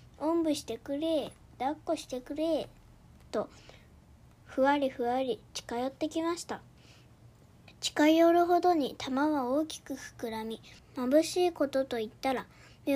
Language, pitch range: Japanese, 250-315 Hz